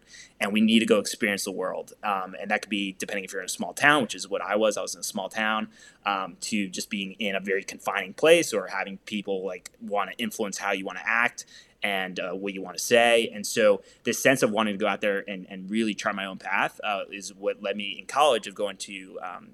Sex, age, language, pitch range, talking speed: male, 20-39, English, 100-120 Hz, 265 wpm